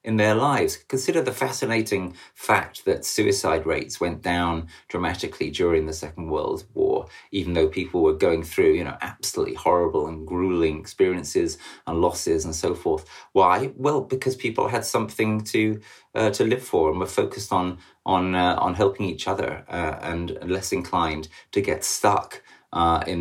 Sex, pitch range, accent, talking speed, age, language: male, 85-145 Hz, British, 170 wpm, 30-49, English